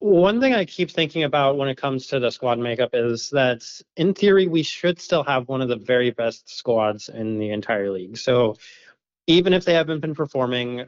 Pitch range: 110-140 Hz